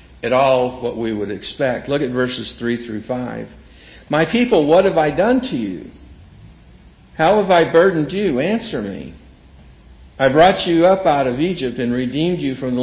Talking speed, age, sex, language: 180 wpm, 60-79, male, English